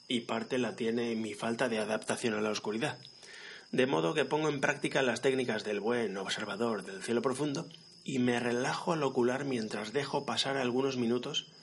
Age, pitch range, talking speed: 30-49, 120-145 Hz, 180 wpm